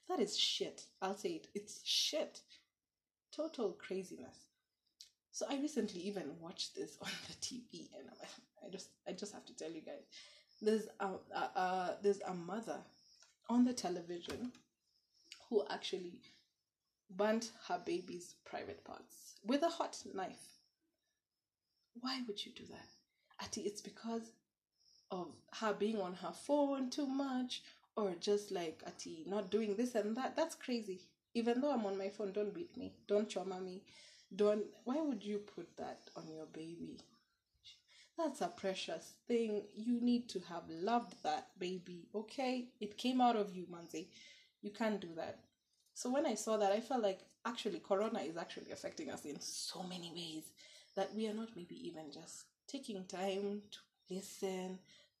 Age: 20-39